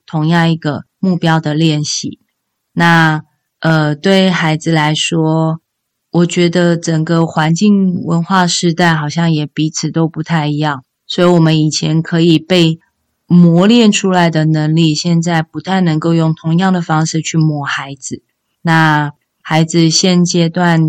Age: 20-39